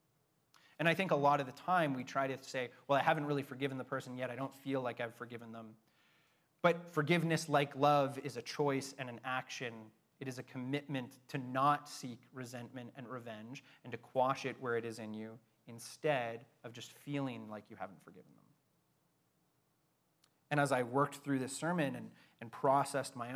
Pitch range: 120-150 Hz